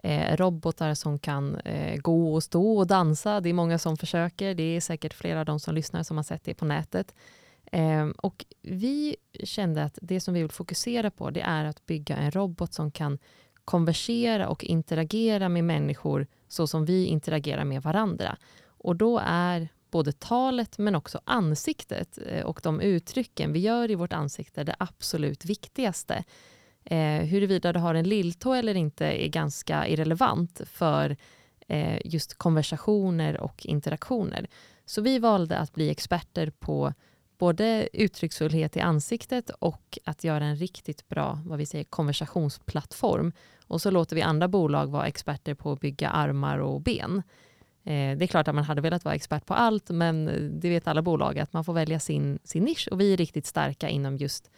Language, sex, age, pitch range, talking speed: Swedish, female, 20-39, 155-190 Hz, 175 wpm